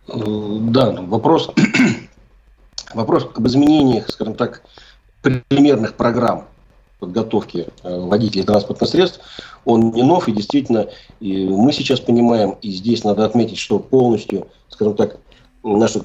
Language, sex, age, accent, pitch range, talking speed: Russian, male, 40-59, native, 105-125 Hz, 115 wpm